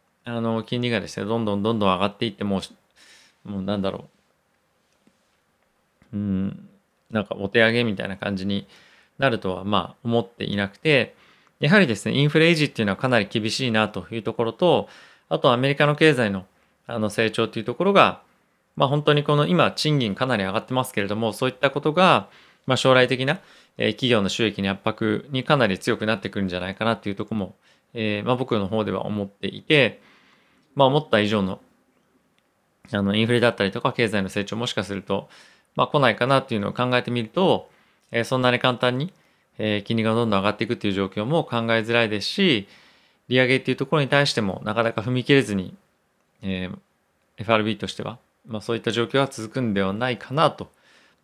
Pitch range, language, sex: 100-130 Hz, Japanese, male